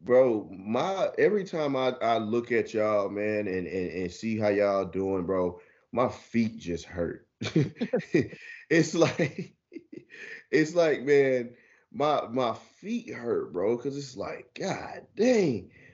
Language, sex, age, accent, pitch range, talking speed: English, male, 20-39, American, 105-135 Hz, 140 wpm